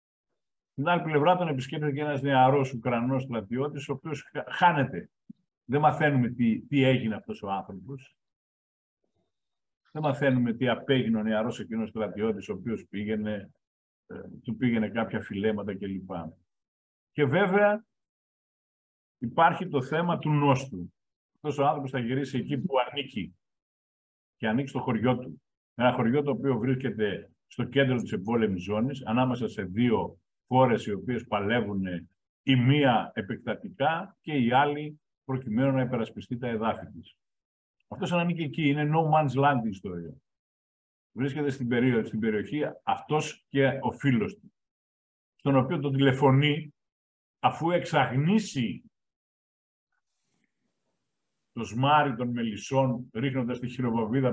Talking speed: 130 wpm